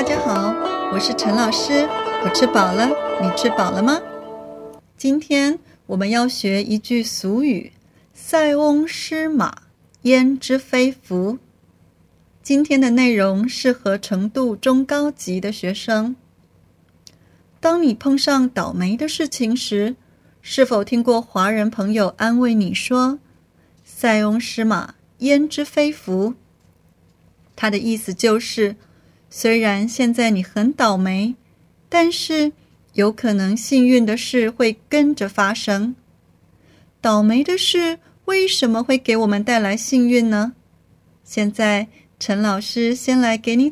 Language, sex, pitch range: Chinese, female, 210-260 Hz